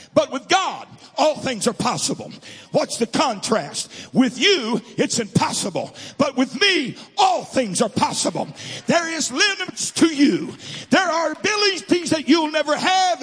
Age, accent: 50-69, American